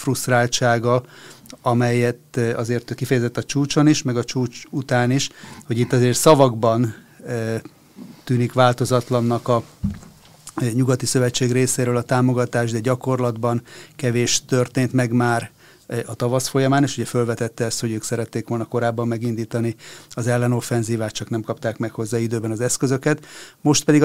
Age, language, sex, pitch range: 30-49, Hungarian, male, 115-130 Hz